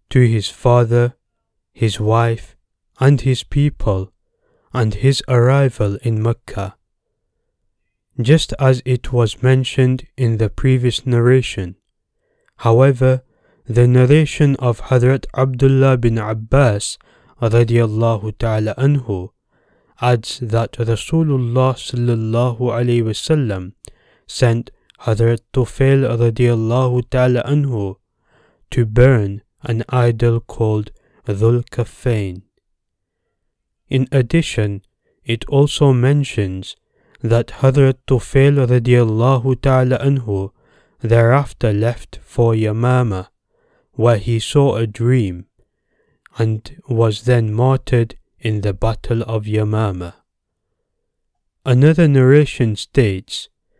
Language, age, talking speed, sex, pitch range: English, 20-39, 95 wpm, male, 110-130 Hz